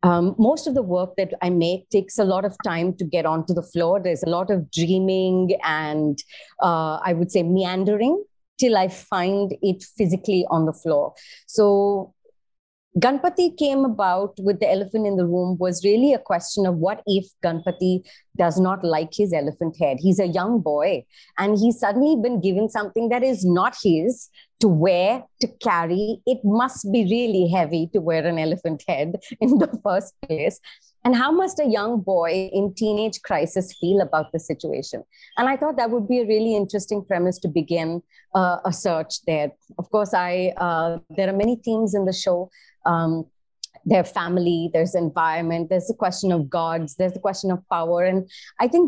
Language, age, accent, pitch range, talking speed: English, 30-49, Indian, 175-220 Hz, 185 wpm